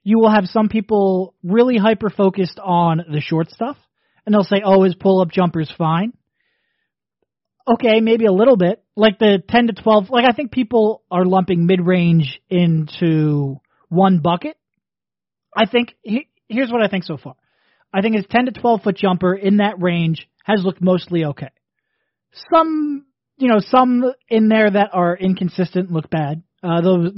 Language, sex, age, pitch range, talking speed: English, male, 30-49, 170-220 Hz, 175 wpm